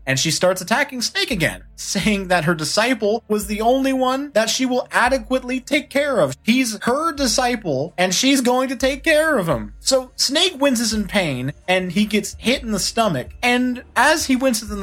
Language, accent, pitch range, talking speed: English, American, 160-250 Hz, 200 wpm